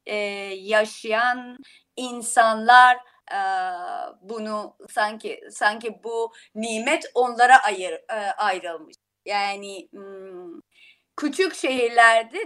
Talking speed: 75 wpm